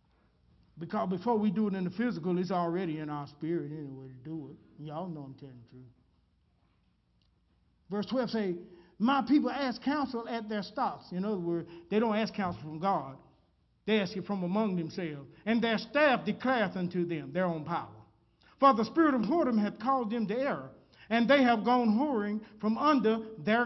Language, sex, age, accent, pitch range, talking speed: English, male, 50-69, American, 170-260 Hz, 190 wpm